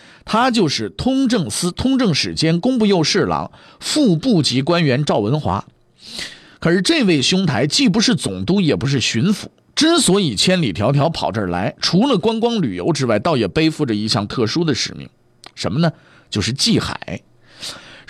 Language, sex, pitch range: Chinese, male, 135-200 Hz